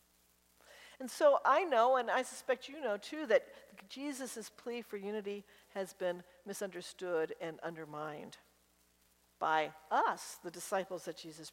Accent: American